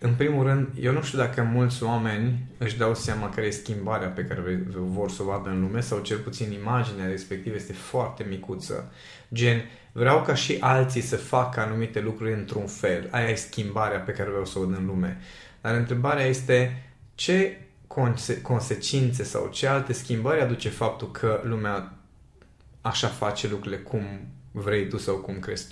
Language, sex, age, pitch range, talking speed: Romanian, male, 20-39, 105-130 Hz, 180 wpm